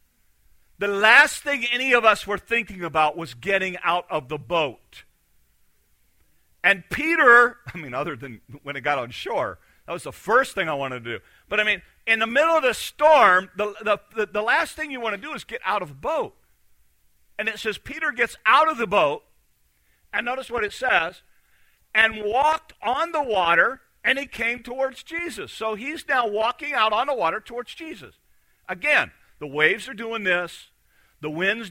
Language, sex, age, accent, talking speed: English, male, 50-69, American, 190 wpm